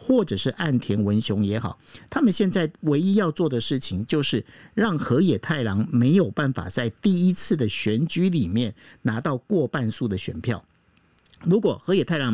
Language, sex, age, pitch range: Chinese, male, 50-69, 120-180 Hz